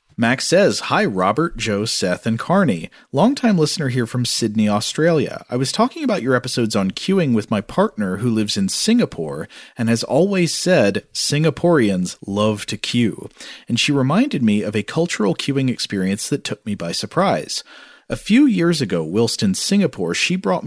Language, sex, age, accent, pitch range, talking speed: English, male, 40-59, American, 105-170 Hz, 175 wpm